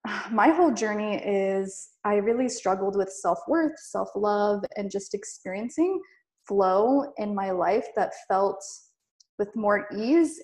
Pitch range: 190-220 Hz